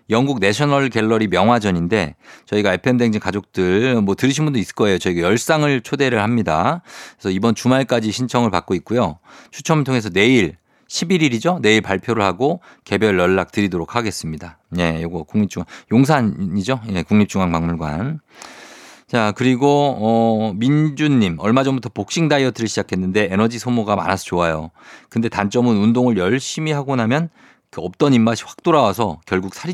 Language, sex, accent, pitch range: Korean, male, native, 95-130 Hz